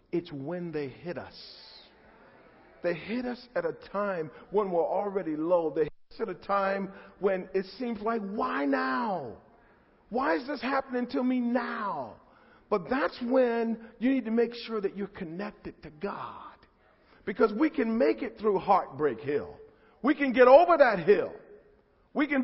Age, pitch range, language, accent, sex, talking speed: 50-69, 245-320 Hz, English, American, male, 170 wpm